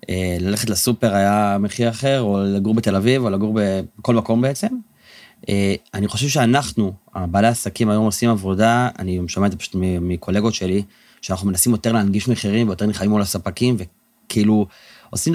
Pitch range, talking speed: 100-120 Hz, 155 wpm